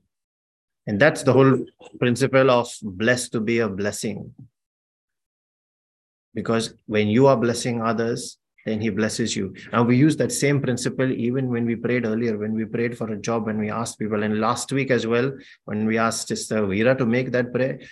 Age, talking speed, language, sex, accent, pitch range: 30-49, 190 wpm, English, male, Indian, 110-125 Hz